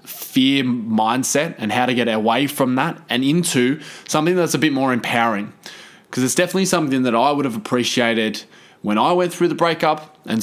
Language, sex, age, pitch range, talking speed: English, male, 20-39, 115-145 Hz, 190 wpm